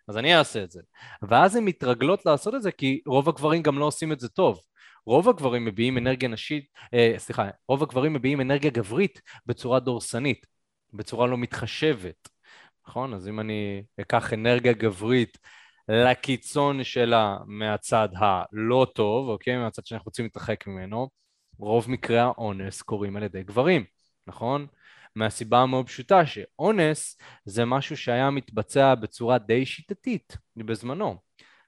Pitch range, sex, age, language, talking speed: 110-135 Hz, male, 20-39, Hebrew, 140 wpm